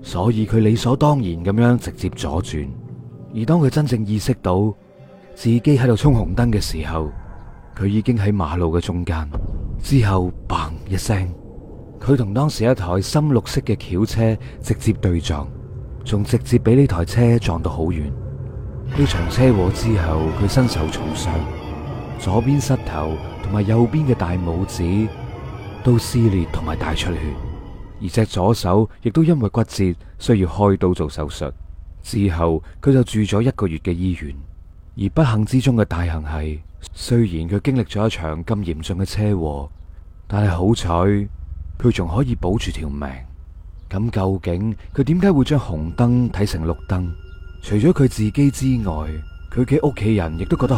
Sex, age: male, 30-49